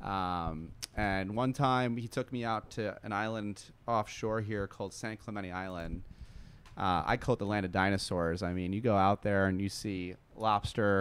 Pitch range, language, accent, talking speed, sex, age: 95-120 Hz, English, American, 190 wpm, male, 30-49